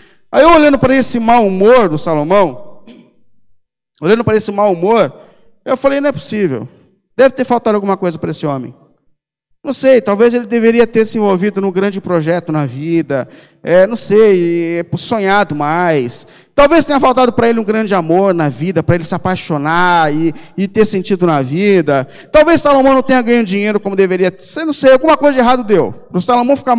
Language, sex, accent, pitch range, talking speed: Portuguese, male, Brazilian, 170-230 Hz, 190 wpm